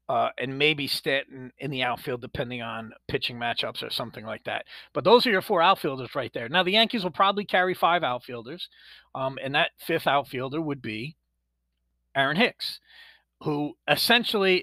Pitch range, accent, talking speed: 140-180 Hz, American, 170 wpm